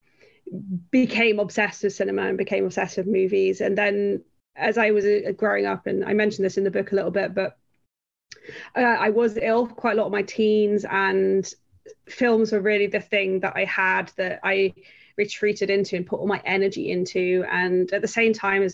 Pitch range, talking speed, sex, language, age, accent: 190-215 Hz, 200 wpm, female, English, 20-39, British